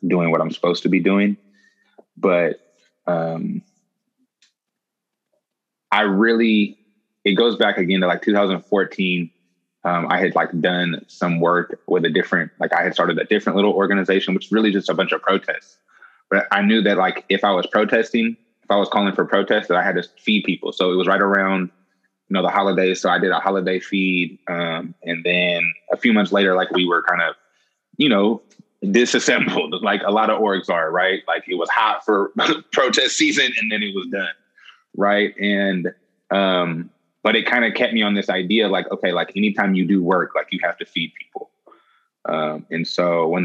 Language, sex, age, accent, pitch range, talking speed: English, male, 20-39, American, 90-105 Hz, 195 wpm